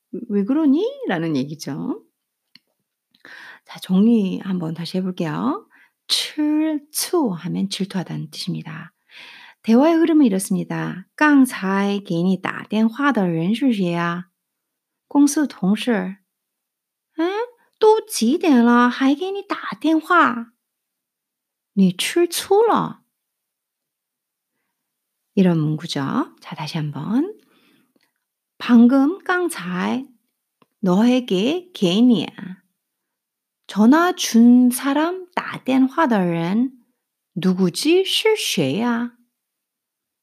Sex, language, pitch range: female, Korean, 200-315 Hz